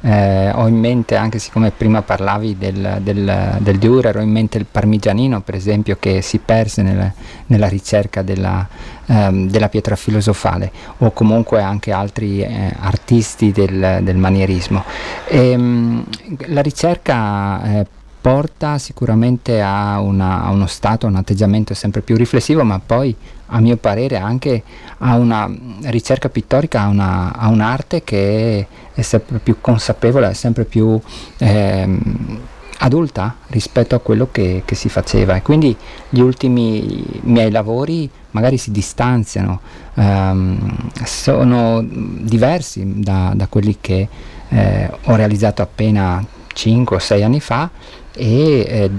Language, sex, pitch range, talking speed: Italian, male, 100-120 Hz, 140 wpm